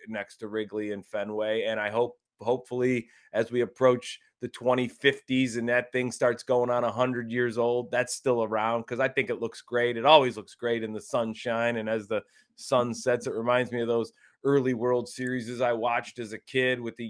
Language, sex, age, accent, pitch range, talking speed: English, male, 20-39, American, 120-165 Hz, 210 wpm